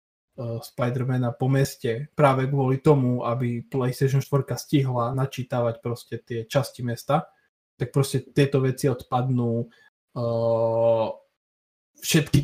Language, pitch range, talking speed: Slovak, 125-145 Hz, 105 wpm